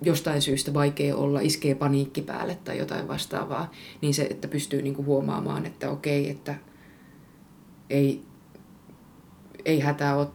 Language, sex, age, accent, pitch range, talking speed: Finnish, female, 20-39, native, 140-165 Hz, 130 wpm